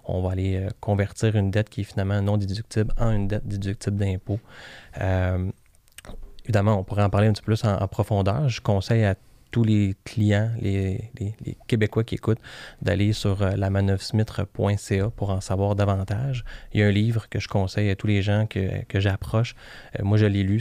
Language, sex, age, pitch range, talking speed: French, male, 20-39, 100-110 Hz, 200 wpm